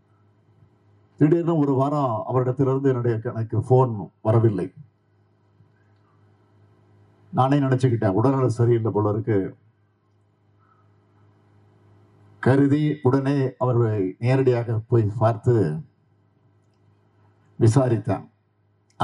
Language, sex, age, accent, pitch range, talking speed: Tamil, male, 50-69, native, 105-130 Hz, 65 wpm